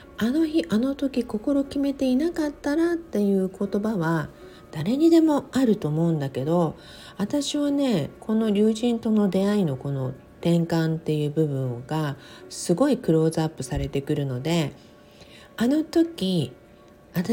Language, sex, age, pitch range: Japanese, female, 50-69, 155-250 Hz